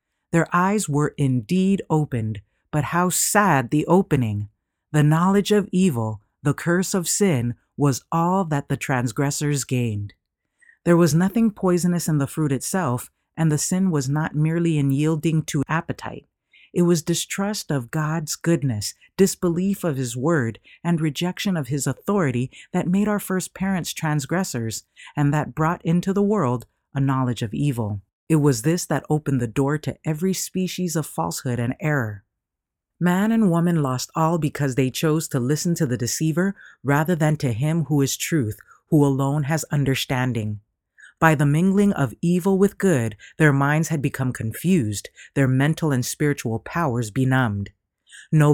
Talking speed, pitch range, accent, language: 160 wpm, 130-175 Hz, American, English